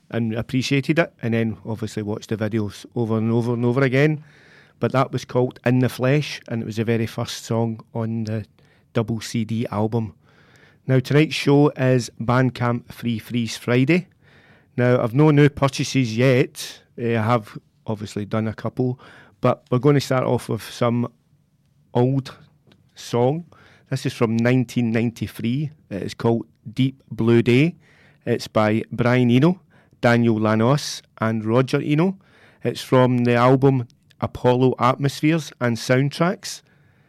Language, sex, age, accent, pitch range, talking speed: English, male, 40-59, British, 115-135 Hz, 145 wpm